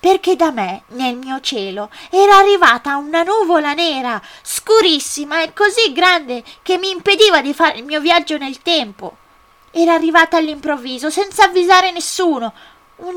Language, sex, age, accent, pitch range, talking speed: Italian, female, 20-39, native, 230-365 Hz, 145 wpm